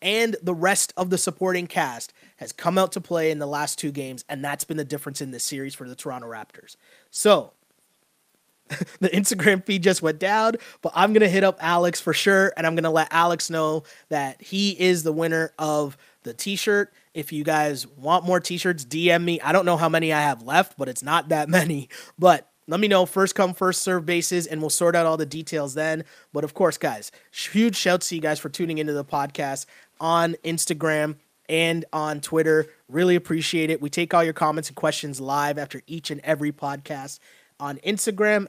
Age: 20-39